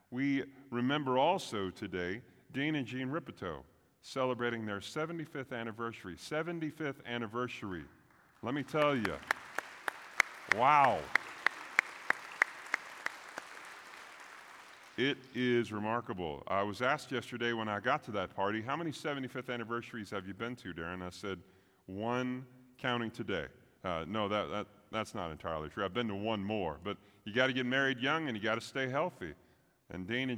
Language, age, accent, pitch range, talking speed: English, 40-59, American, 95-130 Hz, 140 wpm